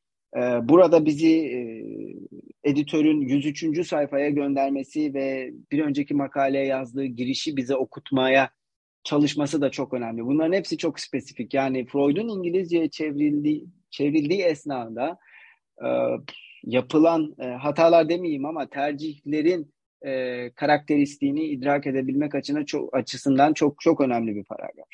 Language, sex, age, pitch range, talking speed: Turkish, male, 40-59, 130-160 Hz, 110 wpm